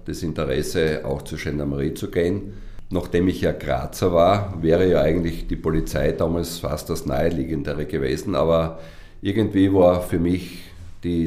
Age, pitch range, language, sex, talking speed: 50-69, 75-90 Hz, German, male, 150 wpm